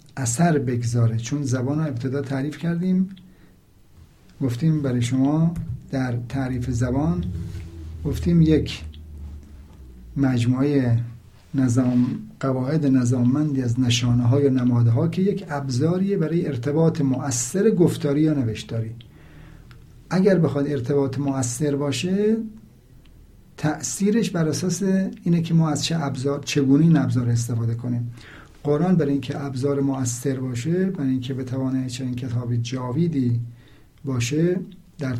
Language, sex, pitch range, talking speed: Persian, male, 120-150 Hz, 115 wpm